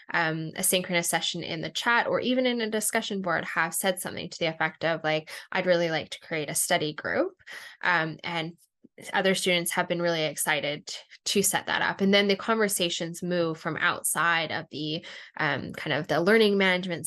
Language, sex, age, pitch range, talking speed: English, female, 10-29, 165-205 Hz, 195 wpm